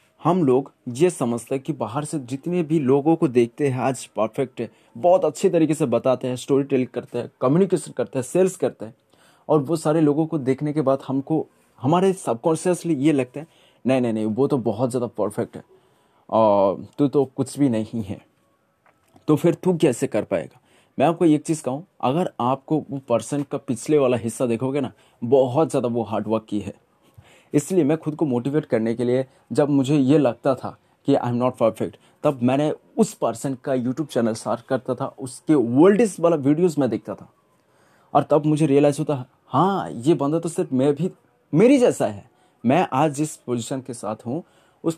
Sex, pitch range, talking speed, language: male, 125-160 Hz, 200 wpm, Hindi